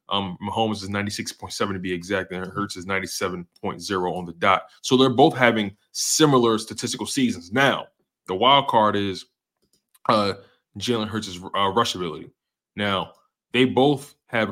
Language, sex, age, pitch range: English, male, 20-39, 95-110 Hz